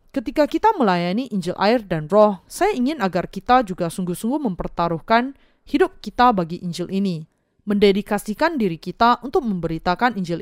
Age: 20-39